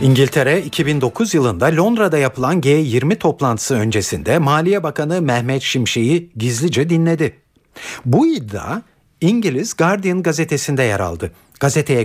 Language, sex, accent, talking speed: Turkish, male, native, 110 wpm